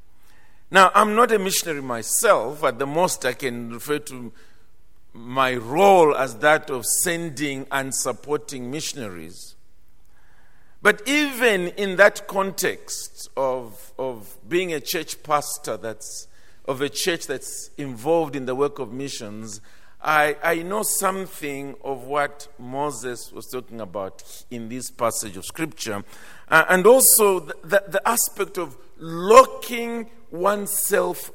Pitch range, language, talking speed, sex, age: 135-200 Hz, English, 130 wpm, male, 50-69